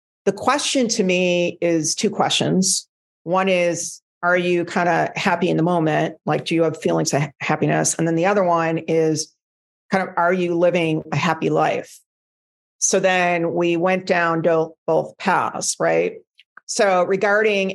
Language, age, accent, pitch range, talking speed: English, 50-69, American, 165-195 Hz, 160 wpm